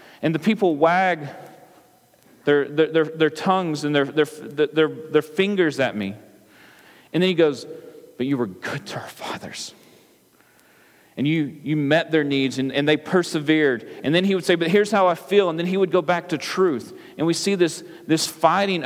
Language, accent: English, American